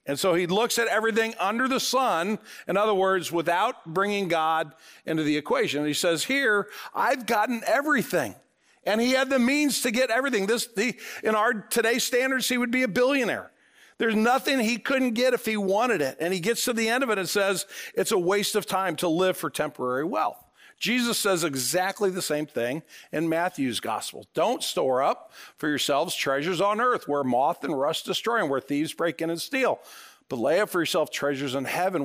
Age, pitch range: 50-69, 170-225 Hz